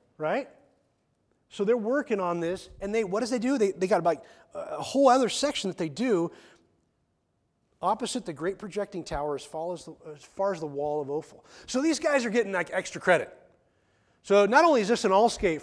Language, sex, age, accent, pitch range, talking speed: English, male, 30-49, American, 150-200 Hz, 210 wpm